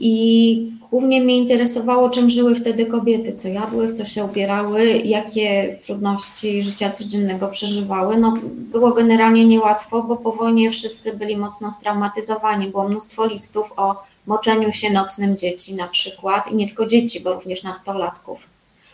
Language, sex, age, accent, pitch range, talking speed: Polish, female, 20-39, native, 195-230 Hz, 145 wpm